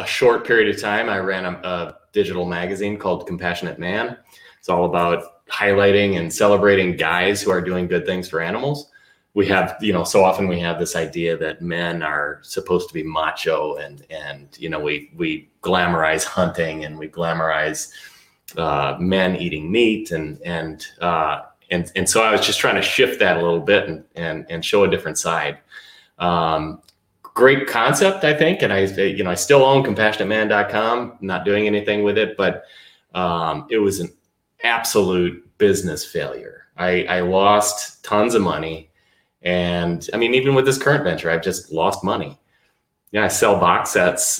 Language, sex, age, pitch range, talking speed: English, male, 30-49, 85-100 Hz, 180 wpm